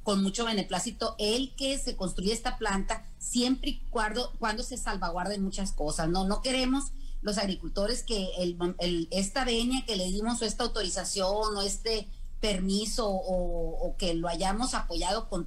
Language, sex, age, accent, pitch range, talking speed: Spanish, female, 40-59, Mexican, 185-220 Hz, 165 wpm